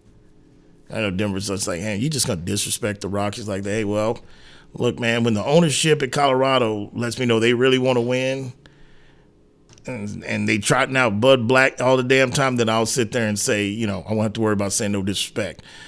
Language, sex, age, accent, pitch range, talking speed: English, male, 30-49, American, 105-135 Hz, 225 wpm